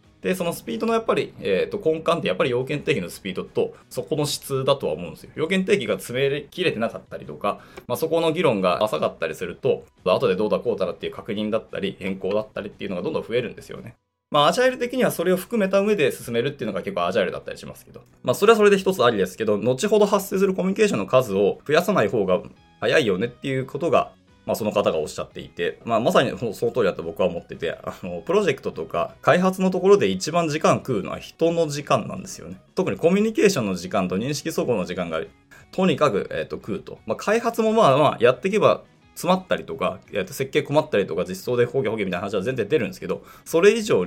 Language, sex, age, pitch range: Japanese, male, 20-39, 130-210 Hz